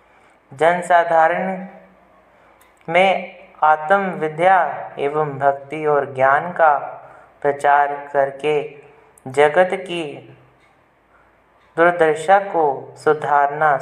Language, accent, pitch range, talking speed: Hindi, native, 145-170 Hz, 65 wpm